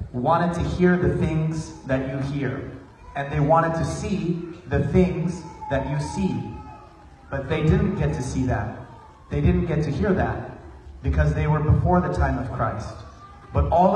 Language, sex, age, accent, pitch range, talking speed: English, male, 30-49, American, 120-150 Hz, 175 wpm